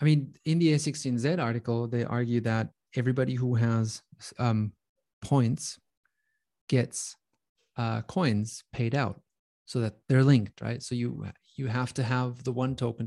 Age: 30-49